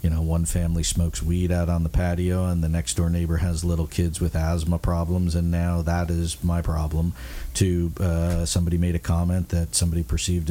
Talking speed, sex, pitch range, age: 205 wpm, male, 85-95 Hz, 50-69